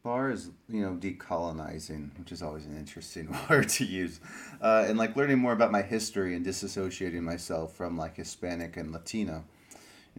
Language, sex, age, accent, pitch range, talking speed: English, male, 30-49, American, 90-105 Hz, 175 wpm